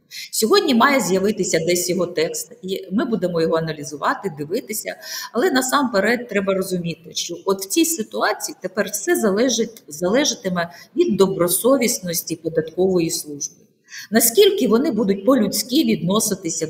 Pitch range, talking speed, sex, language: 180-235 Hz, 120 wpm, female, Ukrainian